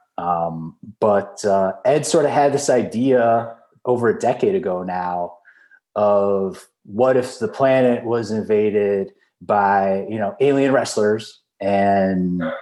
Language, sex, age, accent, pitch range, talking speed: English, male, 30-49, American, 100-130 Hz, 130 wpm